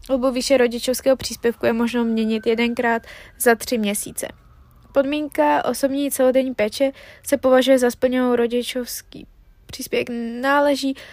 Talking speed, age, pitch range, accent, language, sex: 120 wpm, 20-39, 230-260 Hz, native, Czech, female